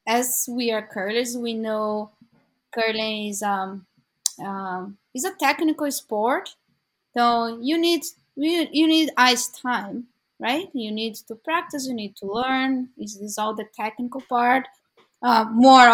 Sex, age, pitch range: female, 20-39, 205-260 Hz